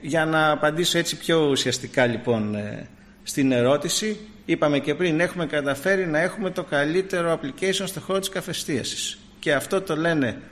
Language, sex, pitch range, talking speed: Greek, male, 145-190 Hz, 160 wpm